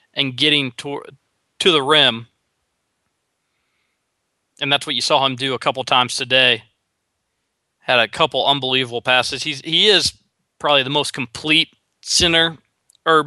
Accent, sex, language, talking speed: American, male, English, 140 wpm